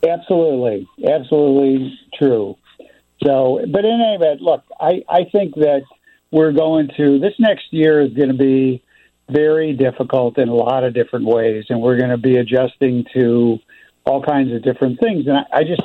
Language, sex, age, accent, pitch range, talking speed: English, male, 60-79, American, 115-140 Hz, 180 wpm